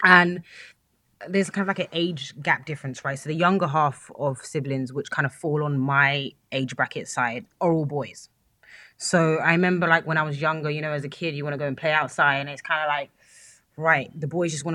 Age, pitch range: 20-39, 135-165 Hz